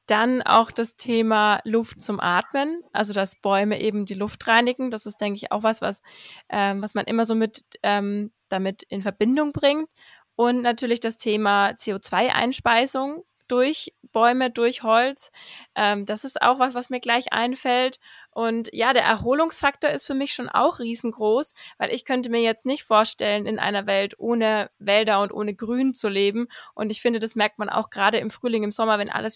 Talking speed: 185 wpm